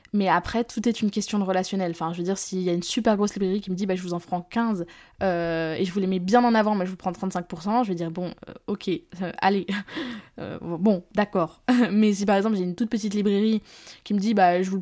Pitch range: 180-215 Hz